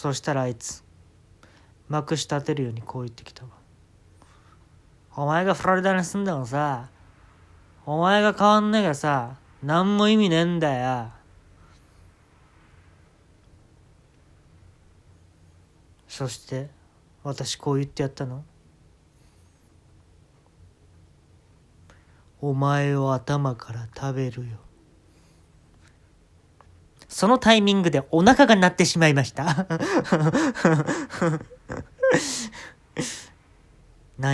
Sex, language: male, Japanese